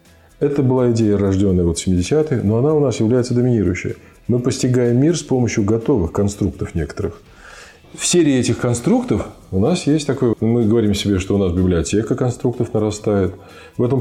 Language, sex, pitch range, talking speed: Russian, male, 90-120 Hz, 165 wpm